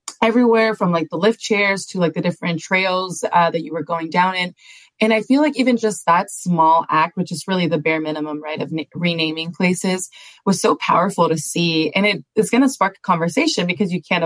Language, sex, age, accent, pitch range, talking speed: English, female, 20-39, American, 160-190 Hz, 220 wpm